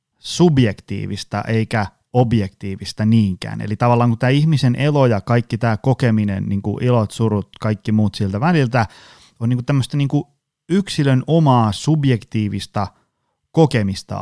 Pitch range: 115-145 Hz